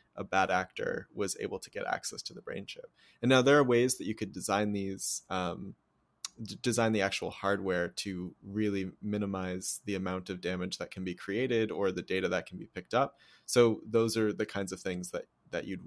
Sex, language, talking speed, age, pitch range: male, English, 210 wpm, 20-39, 95-115 Hz